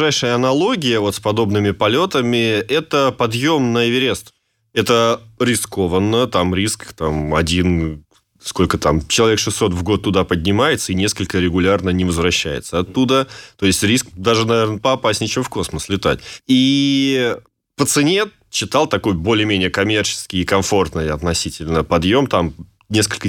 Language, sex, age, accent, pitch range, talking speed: Russian, male, 20-39, native, 90-115 Hz, 135 wpm